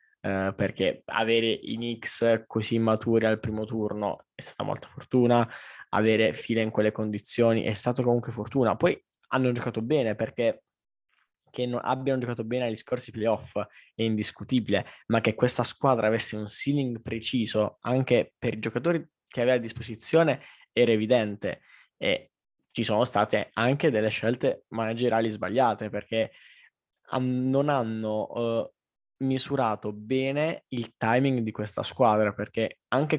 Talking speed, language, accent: 135 wpm, Italian, native